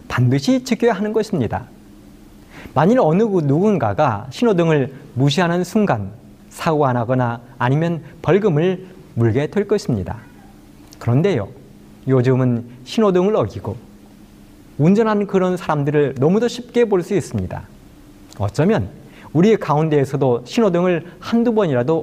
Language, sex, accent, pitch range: Korean, male, native, 115-185 Hz